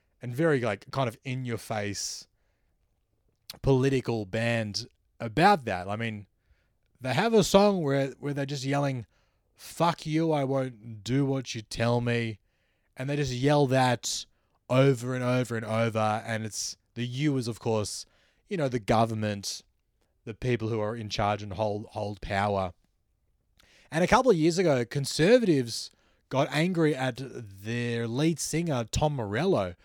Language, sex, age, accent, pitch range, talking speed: English, male, 20-39, Australian, 105-150 Hz, 155 wpm